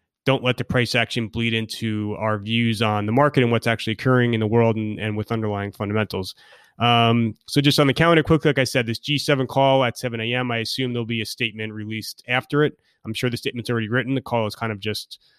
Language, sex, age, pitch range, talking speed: English, male, 30-49, 115-135 Hz, 235 wpm